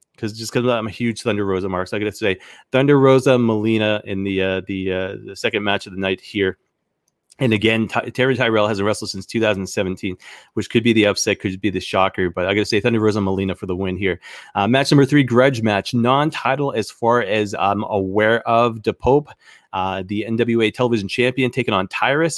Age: 30-49